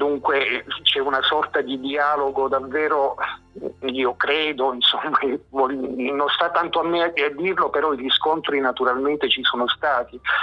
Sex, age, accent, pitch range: male, 50-69, native, 125-150 Hz